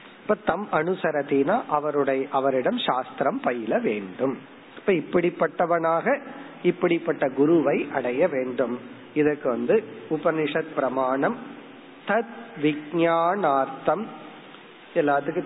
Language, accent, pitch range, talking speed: Tamil, native, 140-170 Hz, 45 wpm